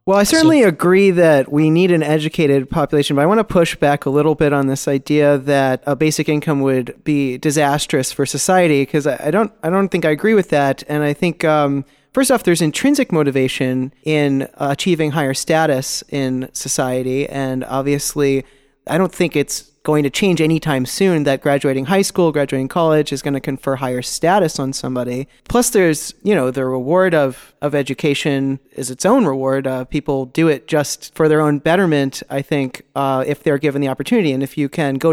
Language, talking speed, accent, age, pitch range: English, 200 wpm, American, 30-49, 135-165 Hz